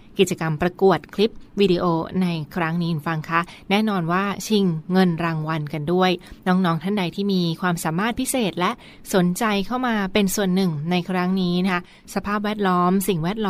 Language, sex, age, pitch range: Thai, female, 20-39, 175-200 Hz